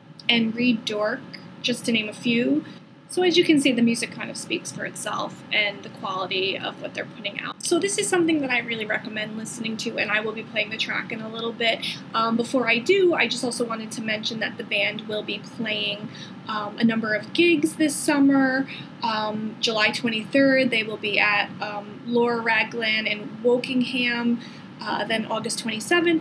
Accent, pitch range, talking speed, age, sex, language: American, 215-255 Hz, 205 wpm, 20-39, female, English